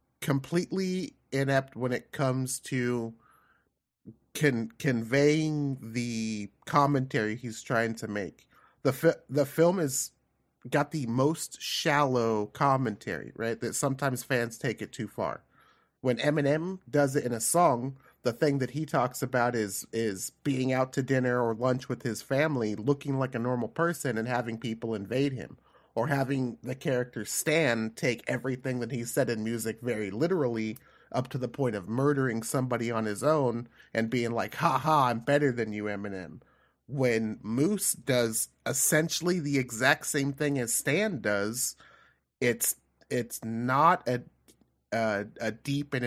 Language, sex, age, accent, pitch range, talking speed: English, male, 30-49, American, 115-140 Hz, 150 wpm